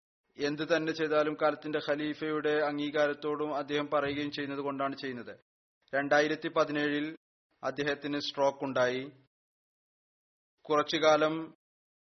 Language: Malayalam